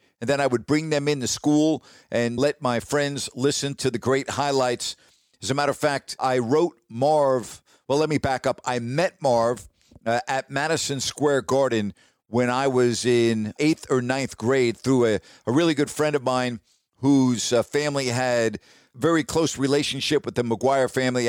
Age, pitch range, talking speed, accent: 50-69, 120-145 Hz, 185 wpm, American